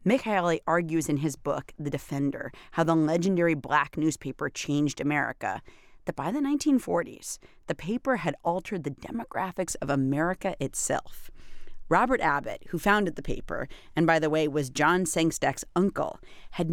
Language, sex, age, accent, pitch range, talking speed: English, female, 40-59, American, 150-200 Hz, 155 wpm